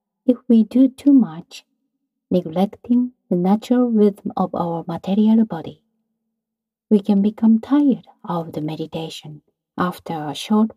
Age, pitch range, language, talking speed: 50-69, 185-245 Hz, English, 130 wpm